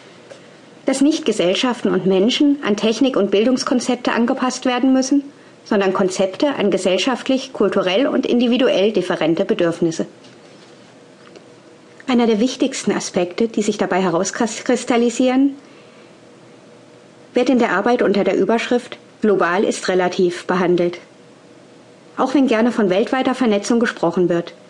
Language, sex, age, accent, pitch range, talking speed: German, female, 50-69, German, 185-250 Hz, 115 wpm